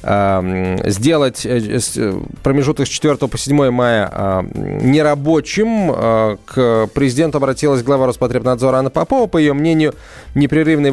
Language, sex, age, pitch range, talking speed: Russian, male, 20-39, 120-155 Hz, 105 wpm